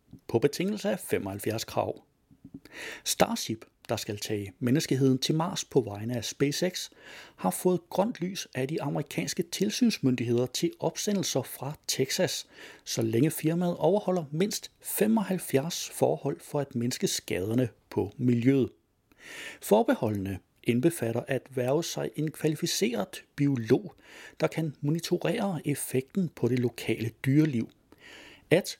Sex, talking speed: male, 120 wpm